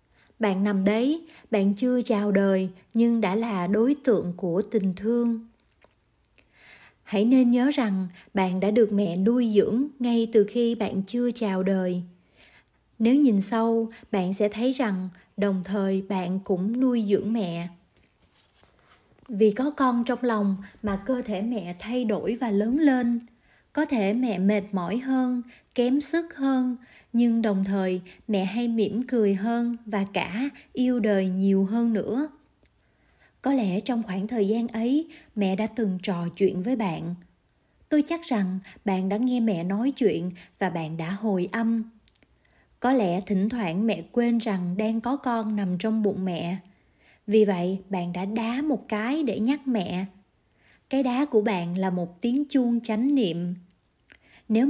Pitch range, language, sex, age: 195-245 Hz, Korean, female, 20-39